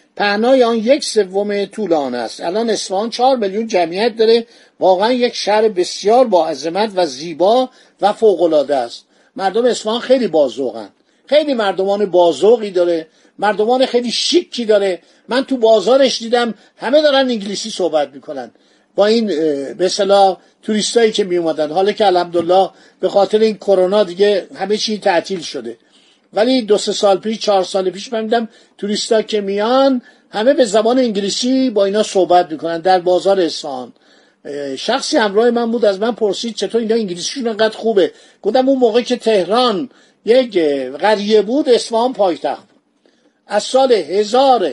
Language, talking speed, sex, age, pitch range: Persian, 150 wpm, male, 50-69, 190-245 Hz